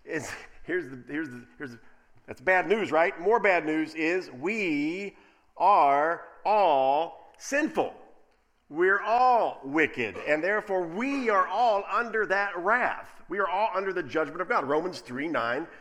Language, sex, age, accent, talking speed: English, male, 50-69, American, 150 wpm